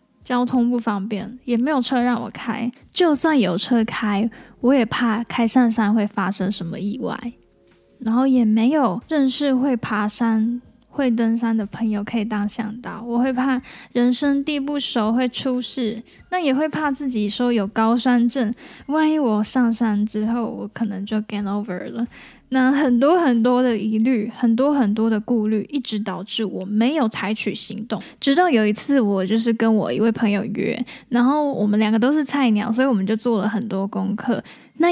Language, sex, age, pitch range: Chinese, female, 10-29, 215-255 Hz